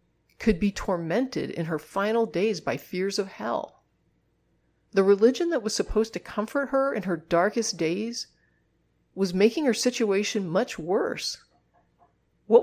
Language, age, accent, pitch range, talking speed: English, 40-59, American, 170-260 Hz, 145 wpm